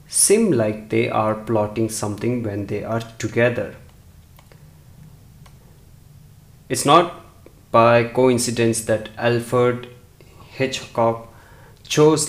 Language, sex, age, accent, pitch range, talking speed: English, male, 30-49, Indian, 110-130 Hz, 90 wpm